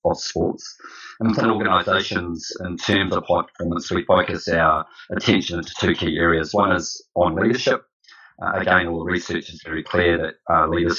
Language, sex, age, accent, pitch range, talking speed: English, male, 30-49, Australian, 85-100 Hz, 180 wpm